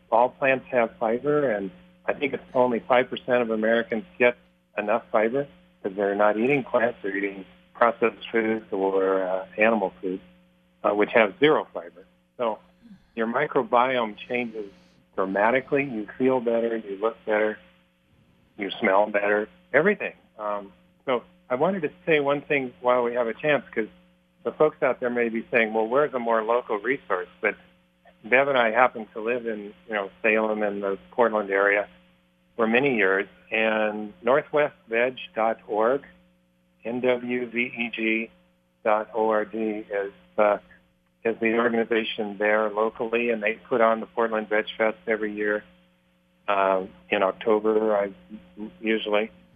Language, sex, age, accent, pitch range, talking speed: English, male, 40-59, American, 95-120 Hz, 145 wpm